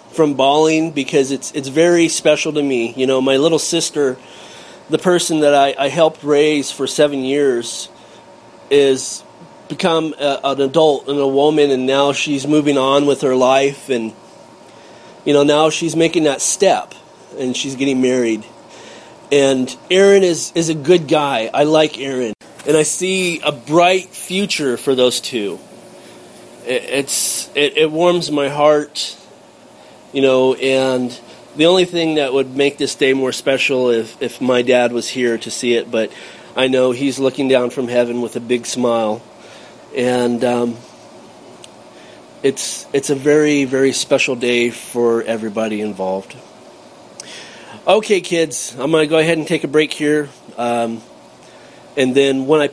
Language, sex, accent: English, male, American